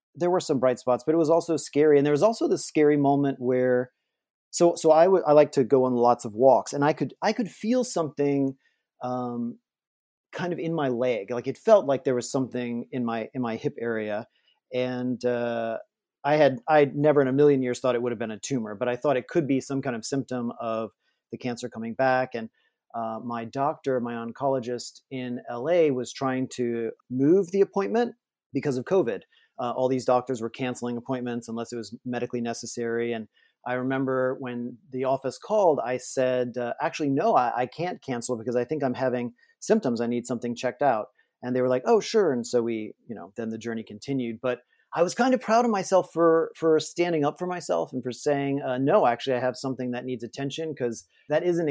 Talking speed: 220 wpm